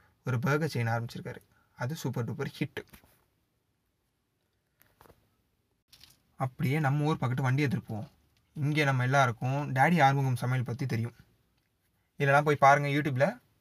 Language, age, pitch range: Tamil, 20-39, 125-155 Hz